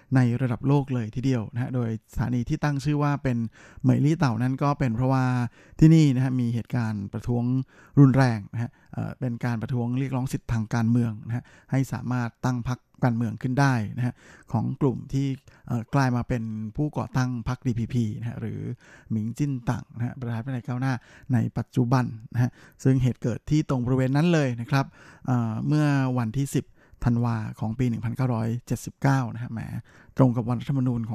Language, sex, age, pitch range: Thai, male, 20-39, 120-140 Hz